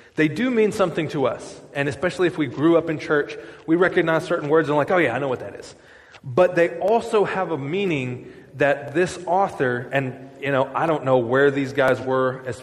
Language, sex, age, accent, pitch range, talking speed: English, male, 20-39, American, 135-175 Hz, 225 wpm